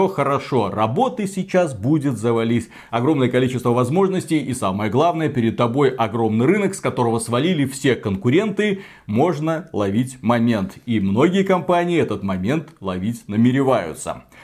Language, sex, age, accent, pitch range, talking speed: Russian, male, 30-49, native, 120-170 Hz, 125 wpm